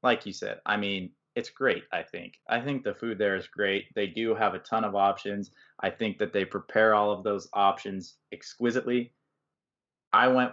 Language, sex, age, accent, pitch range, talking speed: English, male, 20-39, American, 100-130 Hz, 200 wpm